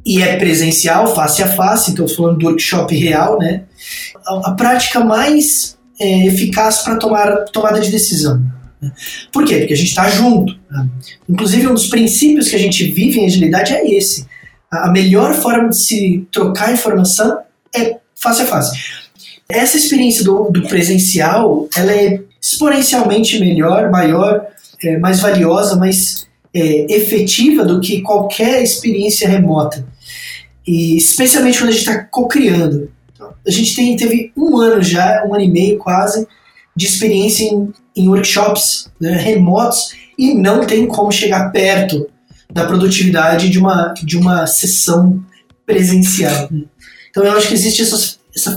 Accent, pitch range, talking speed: Brazilian, 175-220 Hz, 155 wpm